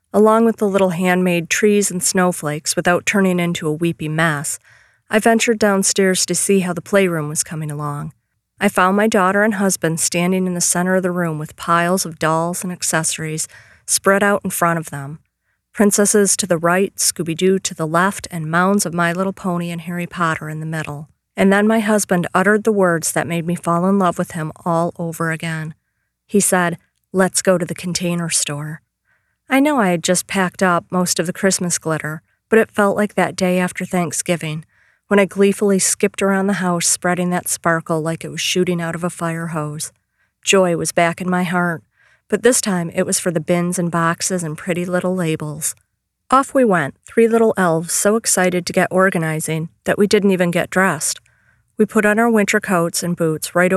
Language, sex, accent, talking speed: English, female, American, 200 wpm